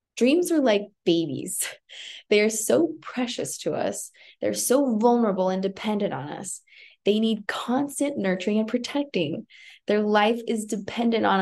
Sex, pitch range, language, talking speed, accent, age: female, 185-245 Hz, English, 145 wpm, American, 20-39